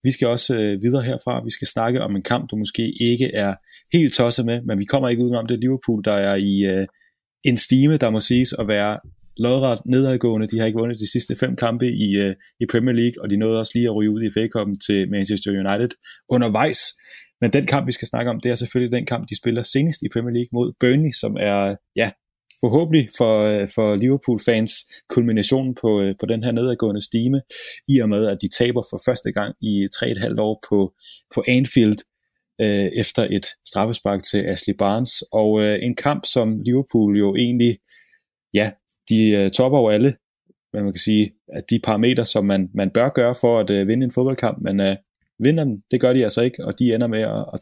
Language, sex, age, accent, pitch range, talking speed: Danish, male, 30-49, native, 105-125 Hz, 215 wpm